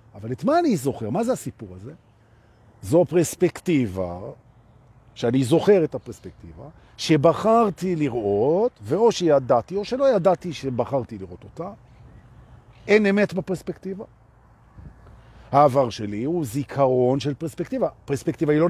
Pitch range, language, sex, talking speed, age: 115-180 Hz, Hebrew, male, 120 wpm, 50-69